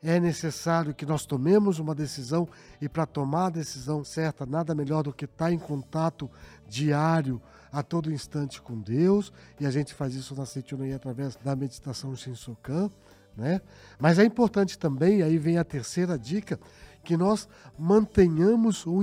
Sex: male